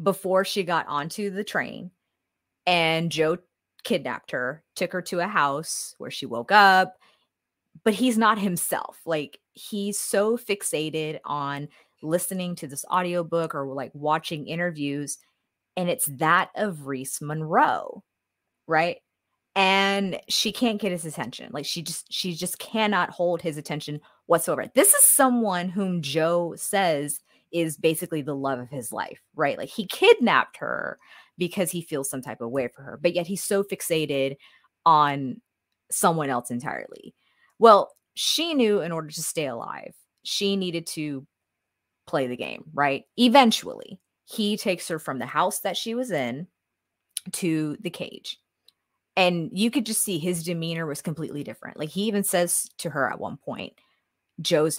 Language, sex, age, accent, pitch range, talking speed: English, female, 30-49, American, 150-195 Hz, 160 wpm